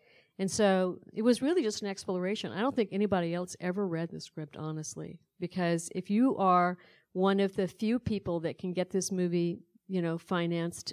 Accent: American